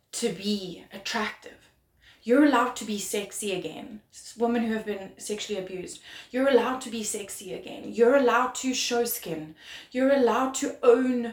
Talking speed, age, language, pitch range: 160 wpm, 20-39, English, 190-240 Hz